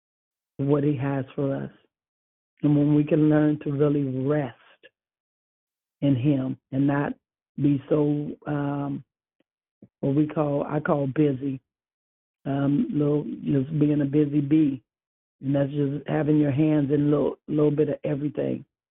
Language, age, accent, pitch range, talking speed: English, 60-79, American, 145-175 Hz, 145 wpm